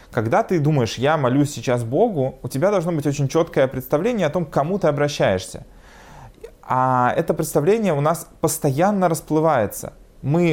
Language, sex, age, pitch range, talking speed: Russian, male, 20-39, 120-155 Hz, 160 wpm